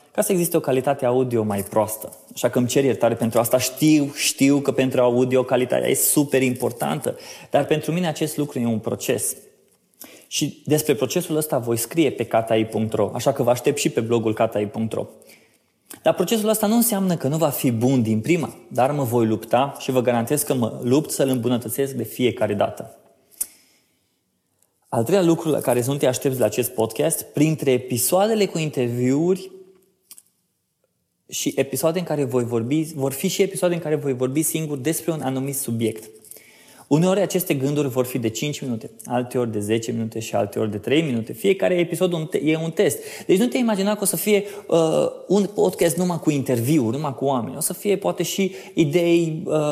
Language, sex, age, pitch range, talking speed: Romanian, male, 20-39, 125-165 Hz, 185 wpm